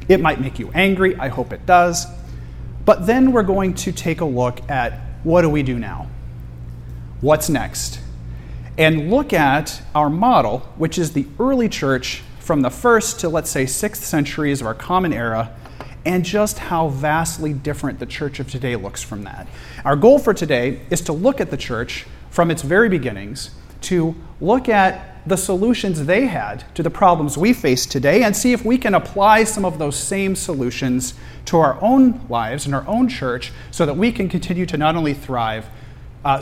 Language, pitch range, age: English, 125-185 Hz, 40-59